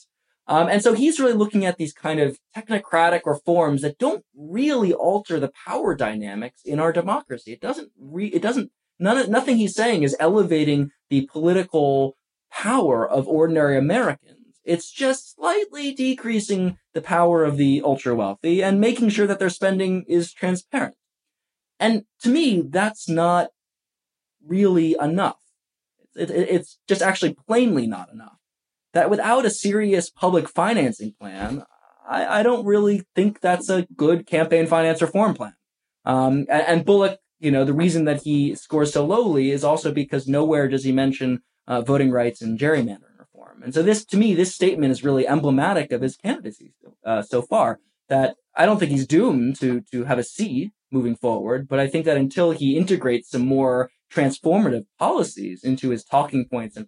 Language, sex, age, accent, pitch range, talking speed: English, male, 20-39, American, 140-200 Hz, 170 wpm